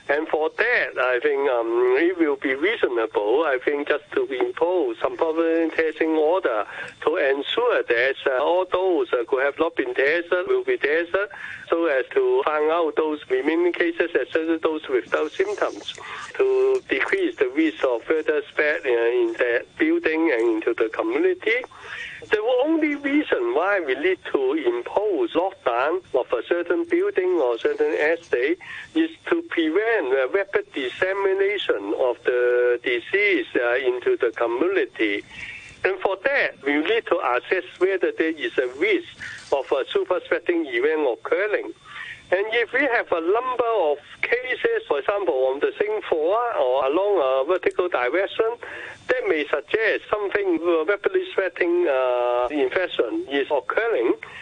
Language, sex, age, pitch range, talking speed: English, male, 60-79, 340-455 Hz, 150 wpm